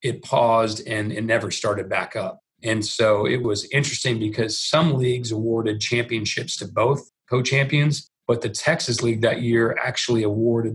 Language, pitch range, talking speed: English, 115-130 Hz, 160 wpm